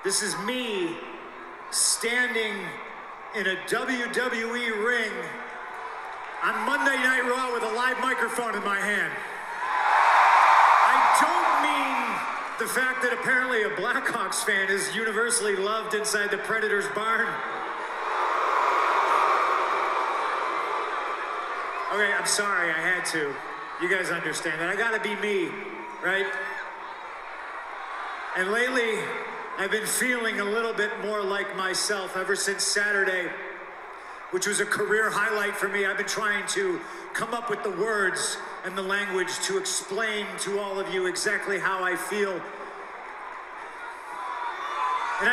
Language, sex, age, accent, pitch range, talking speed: English, male, 40-59, American, 195-250 Hz, 125 wpm